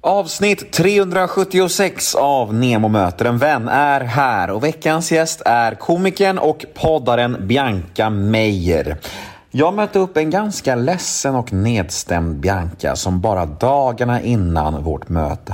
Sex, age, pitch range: male, 30-49, 95-140 Hz